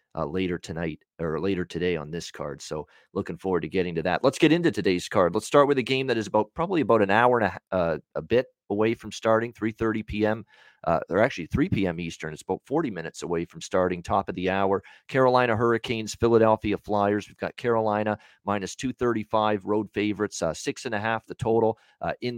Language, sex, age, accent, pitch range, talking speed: English, male, 40-59, American, 95-120 Hz, 215 wpm